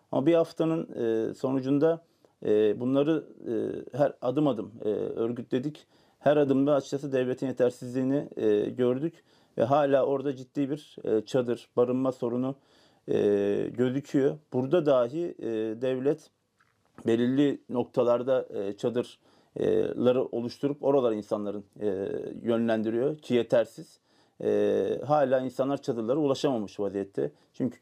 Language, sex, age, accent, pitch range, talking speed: Turkish, male, 40-59, native, 120-145 Hz, 90 wpm